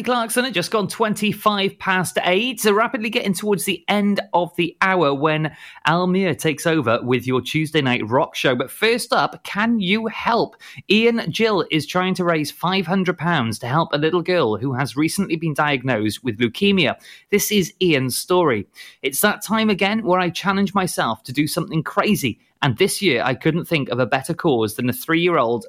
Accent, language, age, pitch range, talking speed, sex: British, English, 30-49, 130-185 Hz, 190 wpm, male